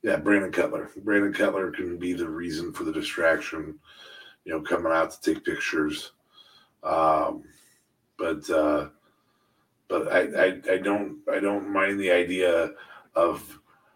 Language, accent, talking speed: English, American, 140 wpm